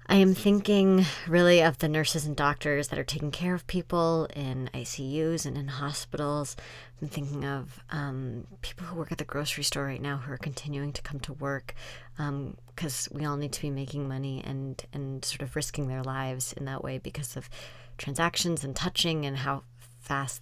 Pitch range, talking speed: 125-150 Hz, 195 wpm